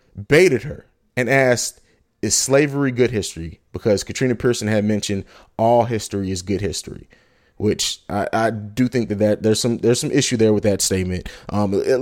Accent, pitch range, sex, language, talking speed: American, 105-135 Hz, male, English, 180 wpm